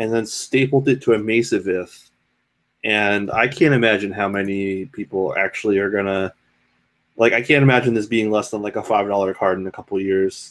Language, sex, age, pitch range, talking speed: English, male, 20-39, 100-125 Hz, 205 wpm